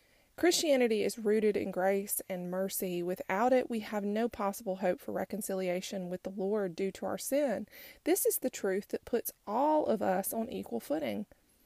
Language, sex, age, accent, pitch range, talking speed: English, female, 30-49, American, 190-235 Hz, 180 wpm